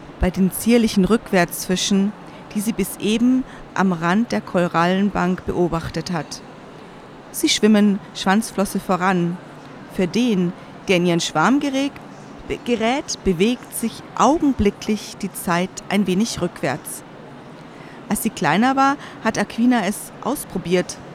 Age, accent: 40-59, German